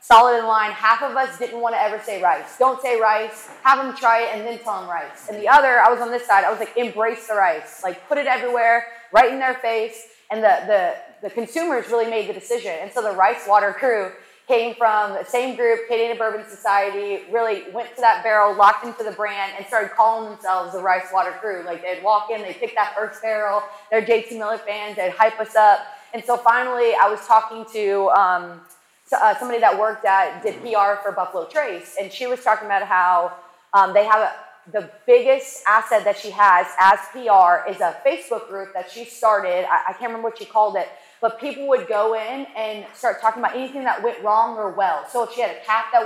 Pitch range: 205-235 Hz